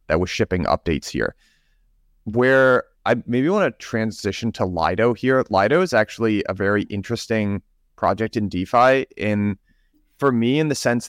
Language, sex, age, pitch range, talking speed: English, male, 30-49, 100-120 Hz, 150 wpm